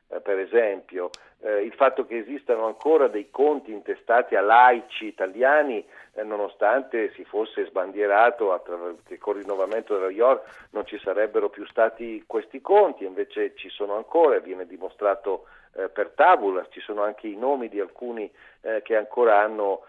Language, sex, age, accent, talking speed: Italian, male, 50-69, native, 160 wpm